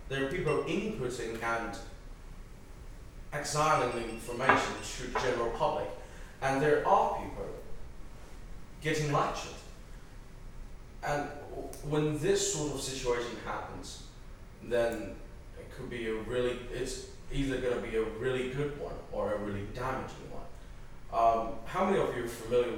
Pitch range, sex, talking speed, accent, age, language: 100-130 Hz, male, 135 wpm, British, 30-49, English